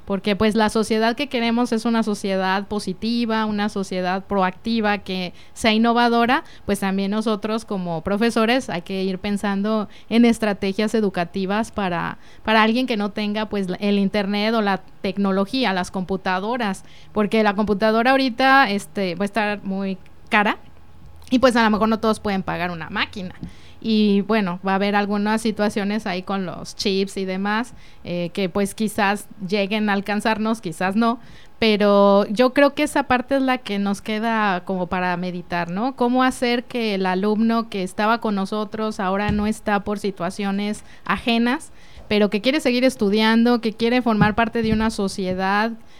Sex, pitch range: female, 195-225 Hz